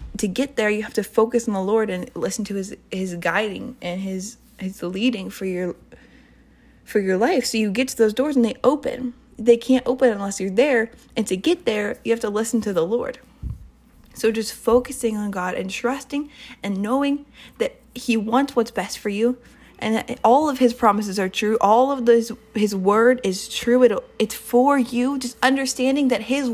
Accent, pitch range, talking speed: American, 210-250 Hz, 205 wpm